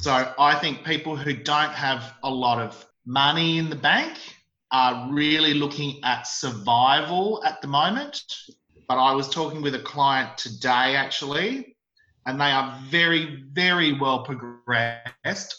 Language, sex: English, male